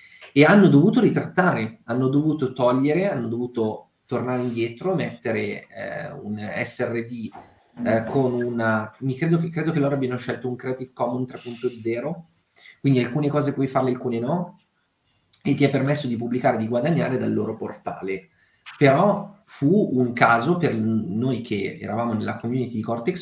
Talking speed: 155 wpm